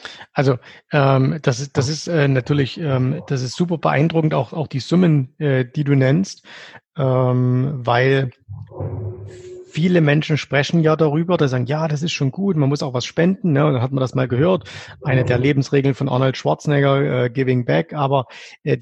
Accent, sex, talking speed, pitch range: German, male, 190 wpm, 135-155 Hz